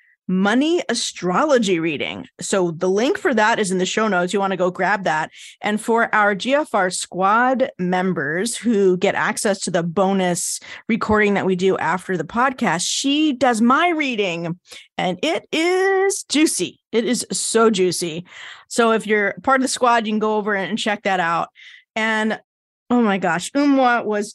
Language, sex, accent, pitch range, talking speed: English, female, American, 185-235 Hz, 175 wpm